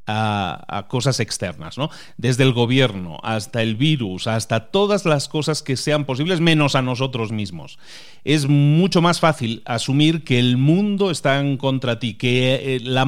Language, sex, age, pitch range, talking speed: Spanish, male, 40-59, 115-150 Hz, 170 wpm